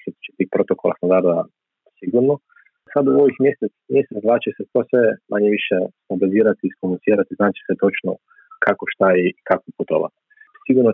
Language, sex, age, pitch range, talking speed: Croatian, male, 40-59, 90-125 Hz, 135 wpm